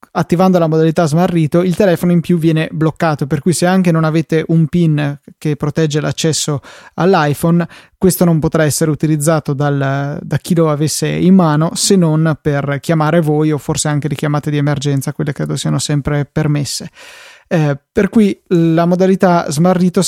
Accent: native